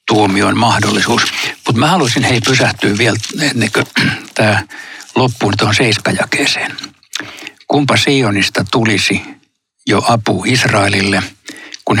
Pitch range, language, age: 100-120 Hz, Finnish, 60-79